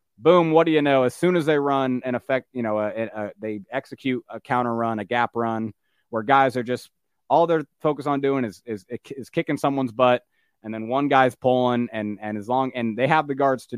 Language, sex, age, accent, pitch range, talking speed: English, male, 20-39, American, 115-140 Hz, 235 wpm